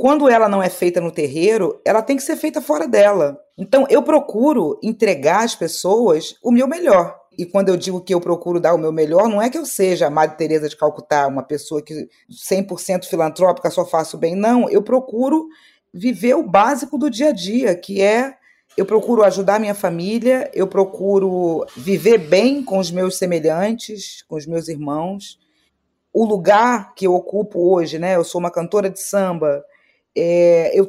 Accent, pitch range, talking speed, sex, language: Brazilian, 175-215 Hz, 185 wpm, female, Portuguese